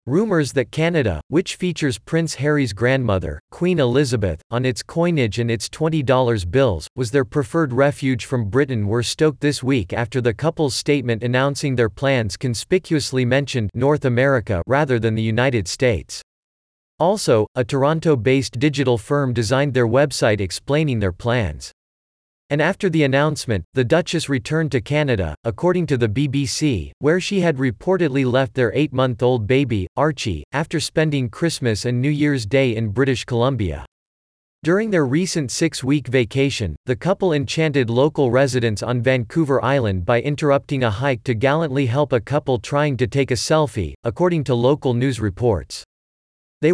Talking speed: 155 wpm